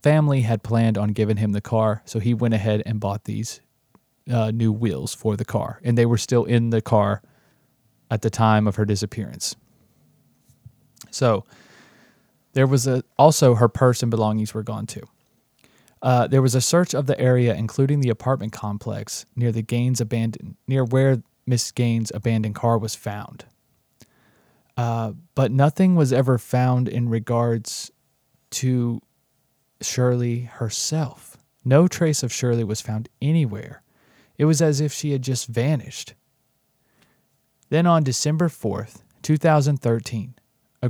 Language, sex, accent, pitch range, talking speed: English, male, American, 110-135 Hz, 155 wpm